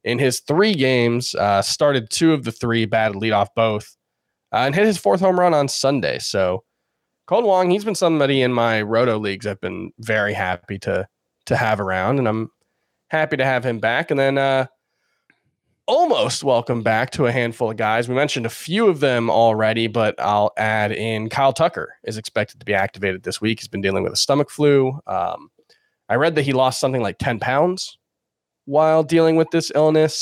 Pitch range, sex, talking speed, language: 110-150 Hz, male, 200 wpm, English